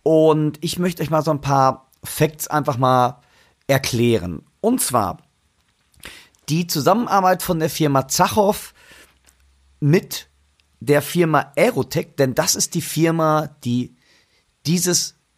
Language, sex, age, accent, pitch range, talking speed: German, male, 40-59, German, 130-170 Hz, 120 wpm